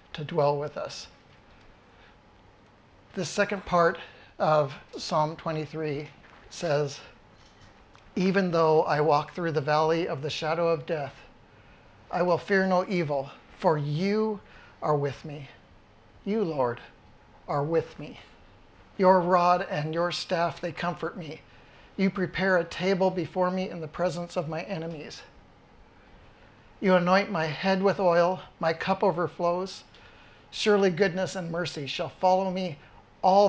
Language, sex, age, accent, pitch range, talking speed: English, male, 50-69, American, 150-185 Hz, 135 wpm